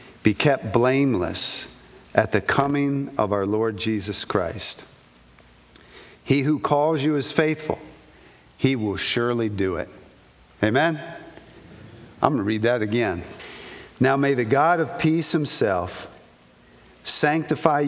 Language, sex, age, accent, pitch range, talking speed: English, male, 50-69, American, 115-145 Hz, 125 wpm